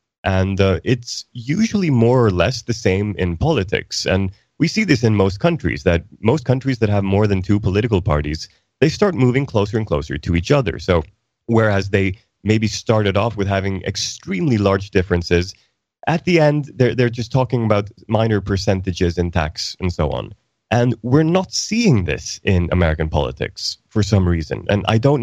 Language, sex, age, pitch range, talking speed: English, male, 30-49, 90-115 Hz, 185 wpm